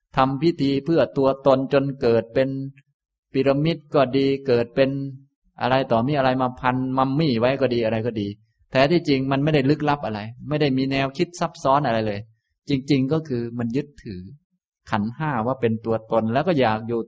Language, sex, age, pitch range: Thai, male, 20-39, 110-145 Hz